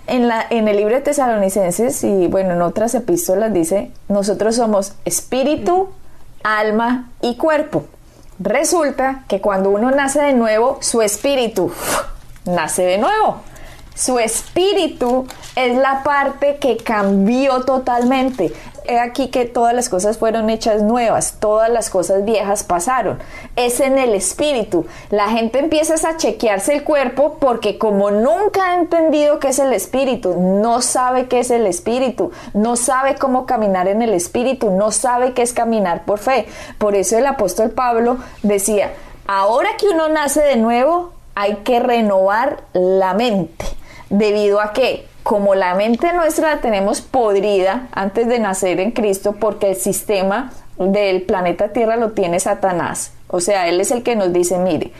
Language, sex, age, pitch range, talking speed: Spanish, female, 20-39, 200-265 Hz, 155 wpm